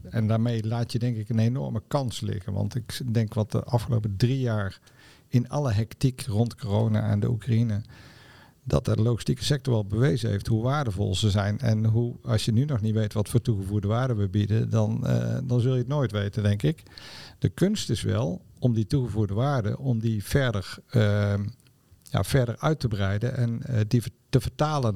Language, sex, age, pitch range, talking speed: Dutch, male, 50-69, 110-125 Hz, 200 wpm